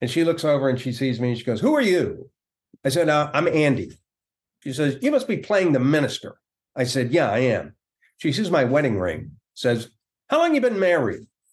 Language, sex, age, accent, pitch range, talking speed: English, male, 50-69, American, 120-165 Hz, 225 wpm